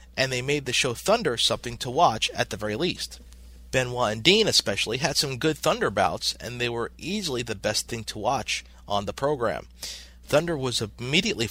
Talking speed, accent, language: 195 wpm, American, English